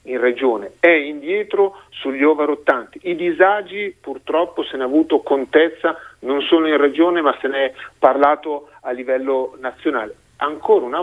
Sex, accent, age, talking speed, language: male, native, 40-59, 150 wpm, Italian